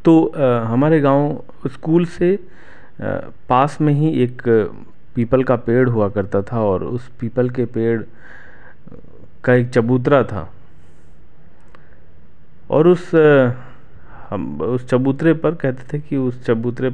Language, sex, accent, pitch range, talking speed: Hindi, male, native, 110-145 Hz, 125 wpm